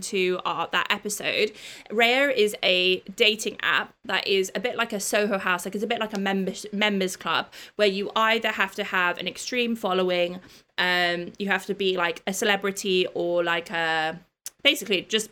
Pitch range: 185-220 Hz